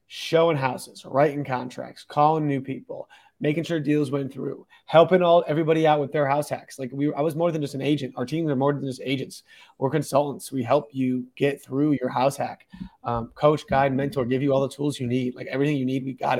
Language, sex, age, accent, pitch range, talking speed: English, male, 30-49, American, 130-150 Hz, 230 wpm